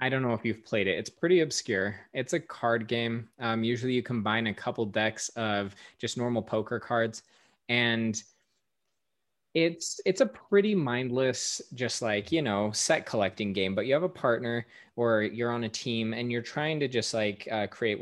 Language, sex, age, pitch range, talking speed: English, male, 20-39, 110-130 Hz, 190 wpm